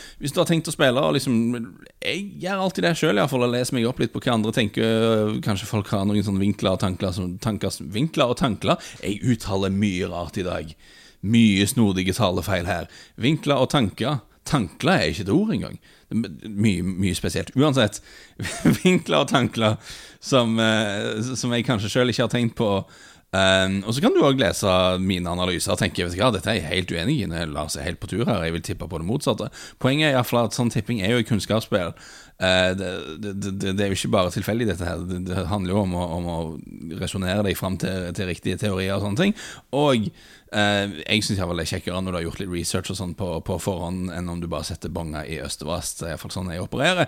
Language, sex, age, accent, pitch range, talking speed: English, male, 30-49, Norwegian, 90-115 Hz, 220 wpm